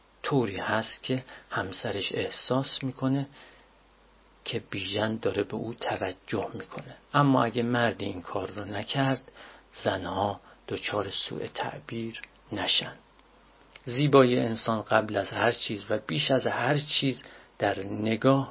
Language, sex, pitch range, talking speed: Persian, male, 110-130 Hz, 125 wpm